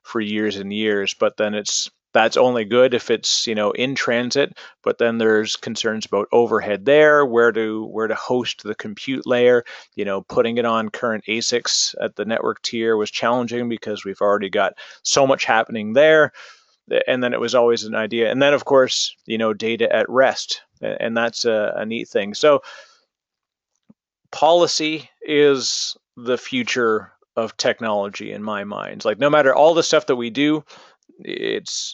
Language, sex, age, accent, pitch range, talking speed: English, male, 30-49, American, 110-135 Hz, 175 wpm